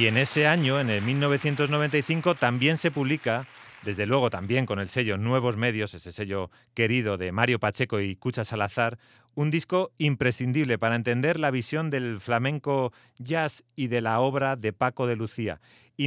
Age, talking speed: 30-49, 170 wpm